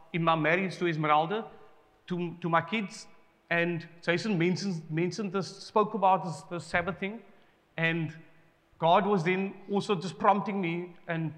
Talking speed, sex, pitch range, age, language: 150 wpm, male, 165-205 Hz, 40-59, English